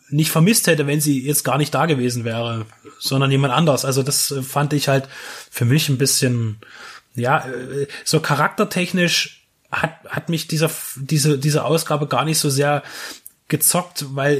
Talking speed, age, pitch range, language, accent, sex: 165 wpm, 20-39, 135-160 Hz, German, German, male